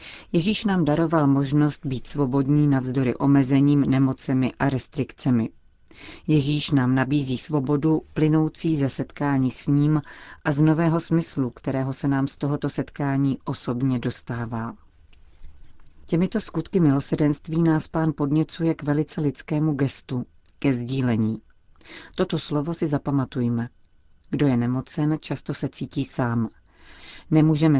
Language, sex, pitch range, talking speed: Czech, female, 130-155 Hz, 120 wpm